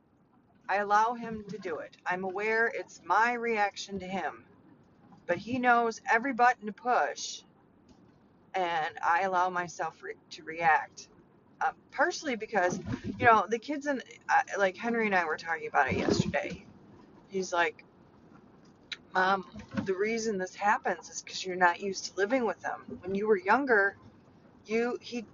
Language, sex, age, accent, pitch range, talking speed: English, female, 40-59, American, 180-220 Hz, 160 wpm